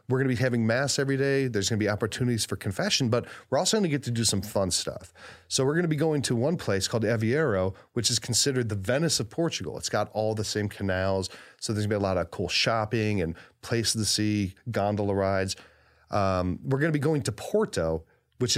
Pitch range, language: 105-130 Hz, English